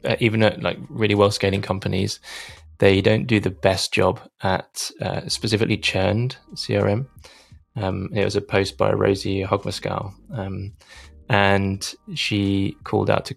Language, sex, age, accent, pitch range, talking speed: English, male, 20-39, British, 95-105 Hz, 145 wpm